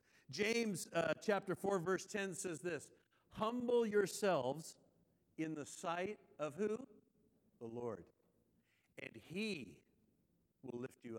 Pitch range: 150-195 Hz